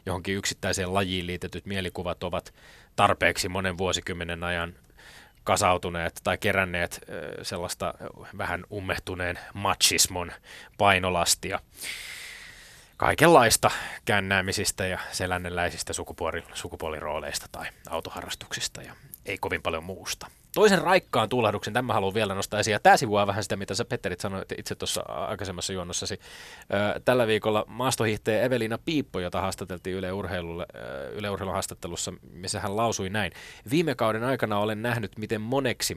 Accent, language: native, Finnish